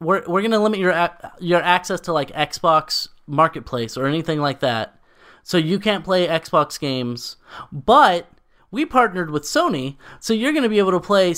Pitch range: 145-205 Hz